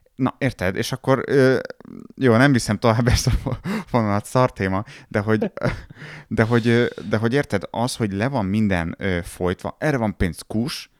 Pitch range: 90-115 Hz